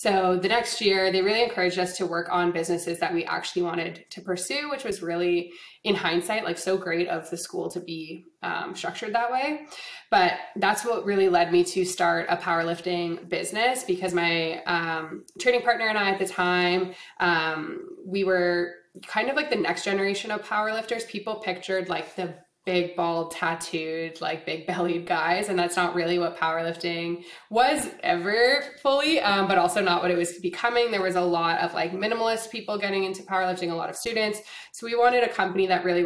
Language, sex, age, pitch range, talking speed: English, female, 20-39, 175-215 Hz, 195 wpm